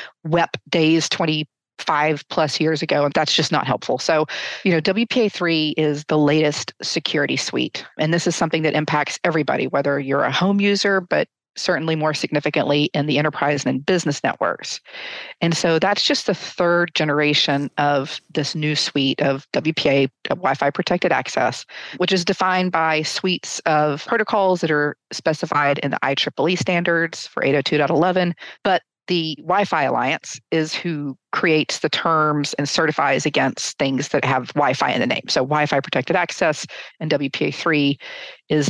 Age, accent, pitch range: 40-59, American, 145-175 Hz